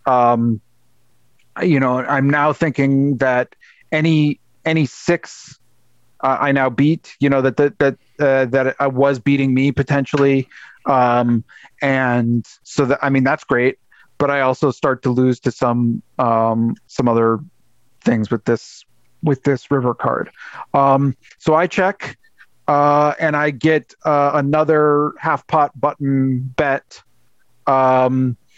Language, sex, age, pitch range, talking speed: English, male, 40-59, 125-145 Hz, 145 wpm